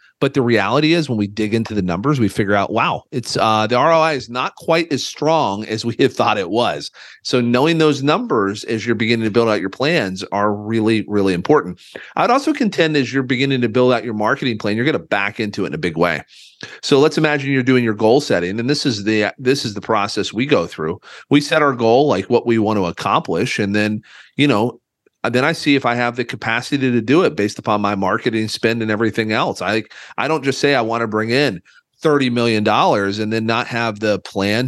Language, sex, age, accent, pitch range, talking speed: English, male, 40-59, American, 105-135 Hz, 240 wpm